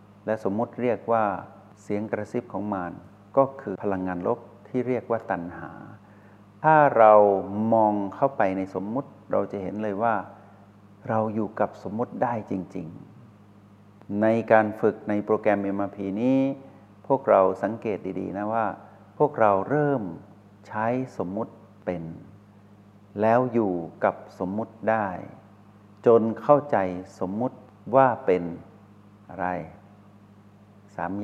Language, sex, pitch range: Thai, male, 95-110 Hz